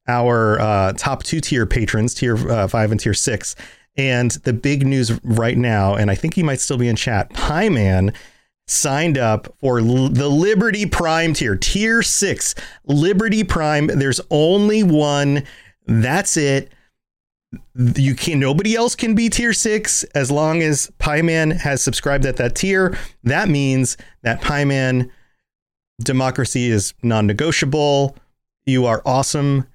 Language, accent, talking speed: English, American, 150 wpm